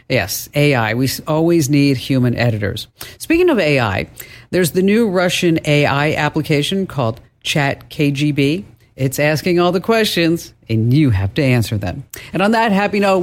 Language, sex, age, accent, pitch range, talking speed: English, female, 50-69, American, 130-185 Hz, 160 wpm